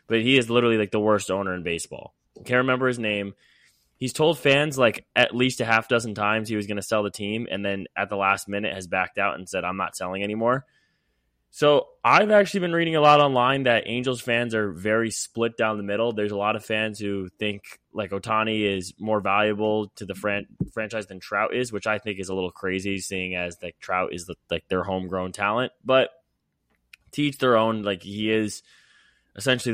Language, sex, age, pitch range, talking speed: English, male, 20-39, 100-125 Hz, 210 wpm